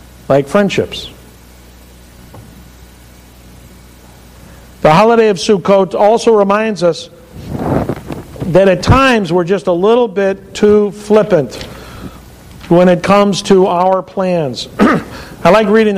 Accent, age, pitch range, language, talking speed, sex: American, 50-69, 170-220 Hz, English, 105 wpm, male